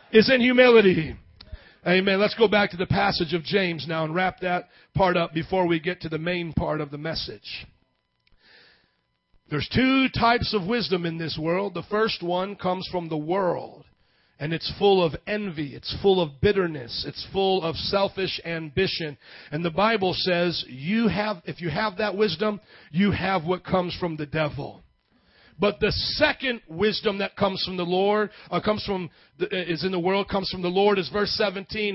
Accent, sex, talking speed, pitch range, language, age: American, male, 185 wpm, 170-210 Hz, English, 40-59